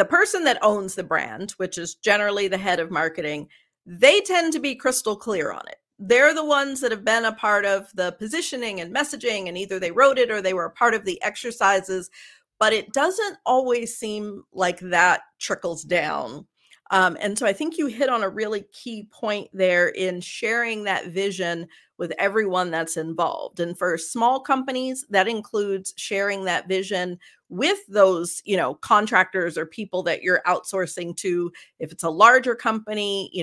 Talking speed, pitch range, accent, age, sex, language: 185 wpm, 175-225 Hz, American, 40-59, female, English